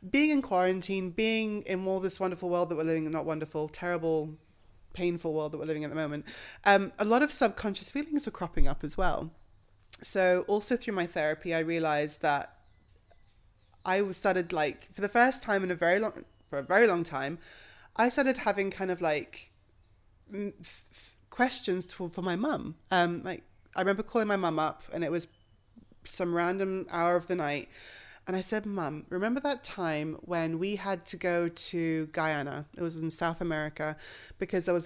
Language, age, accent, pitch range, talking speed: English, 20-39, British, 155-190 Hz, 190 wpm